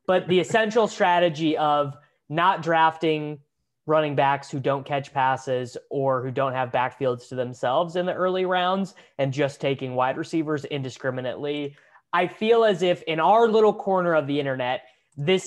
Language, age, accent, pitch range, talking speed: English, 20-39, American, 135-180 Hz, 165 wpm